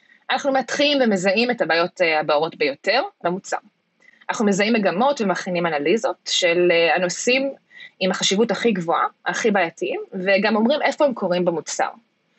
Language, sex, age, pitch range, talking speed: Hebrew, female, 20-39, 180-265 Hz, 130 wpm